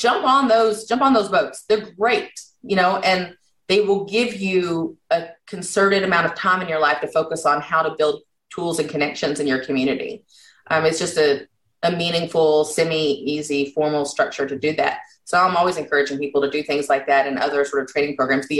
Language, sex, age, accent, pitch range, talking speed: English, female, 30-49, American, 145-190 Hz, 210 wpm